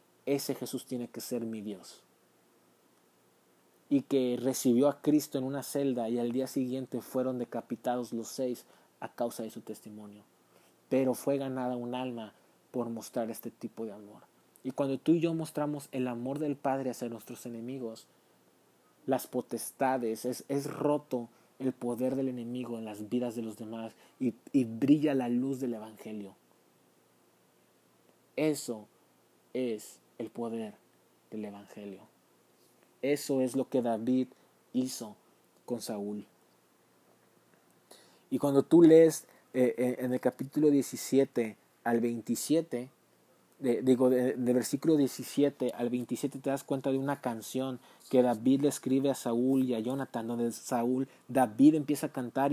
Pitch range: 120-135 Hz